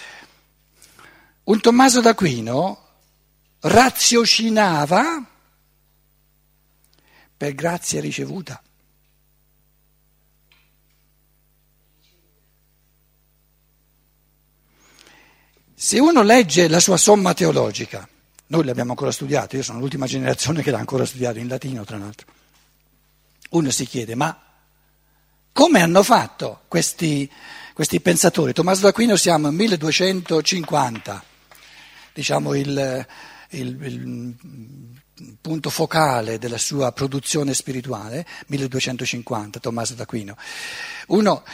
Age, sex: 60-79, male